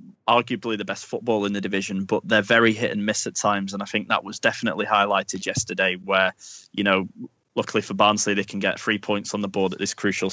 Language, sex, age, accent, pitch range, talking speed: English, male, 20-39, British, 100-120 Hz, 230 wpm